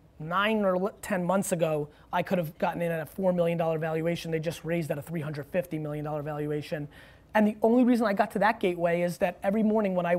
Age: 30-49